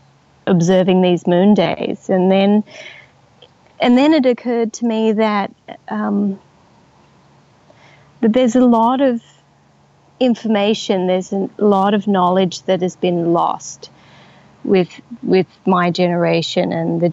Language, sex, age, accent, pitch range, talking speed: English, female, 30-49, Australian, 175-215 Hz, 125 wpm